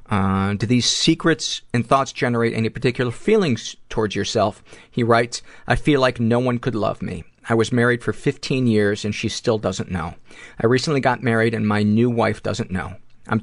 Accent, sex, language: American, male, English